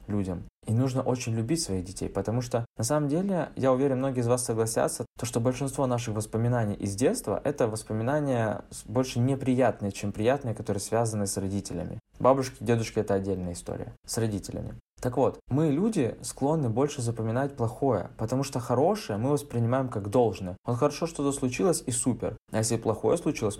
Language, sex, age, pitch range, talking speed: Russian, male, 20-39, 100-125 Hz, 170 wpm